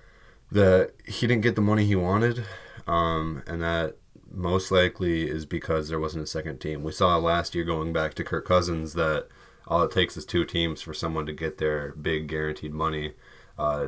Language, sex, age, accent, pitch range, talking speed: English, male, 20-39, American, 80-90 Hz, 195 wpm